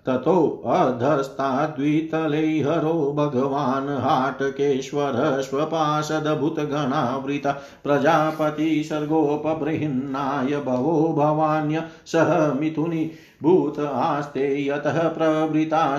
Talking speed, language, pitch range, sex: 60 wpm, Hindi, 140-155 Hz, male